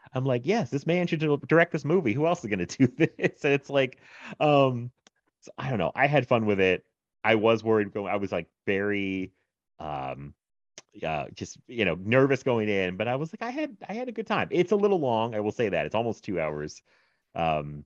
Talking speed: 230 wpm